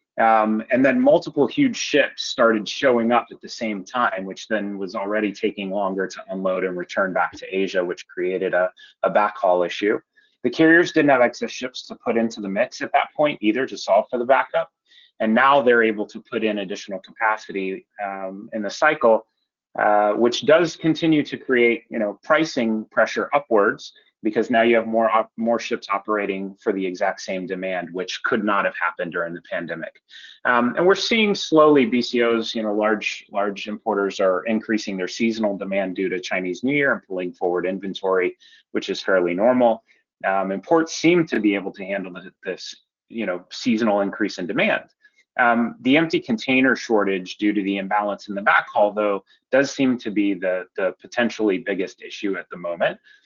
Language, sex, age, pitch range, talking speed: English, male, 30-49, 100-130 Hz, 185 wpm